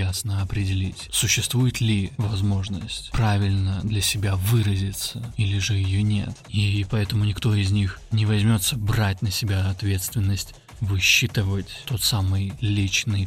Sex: male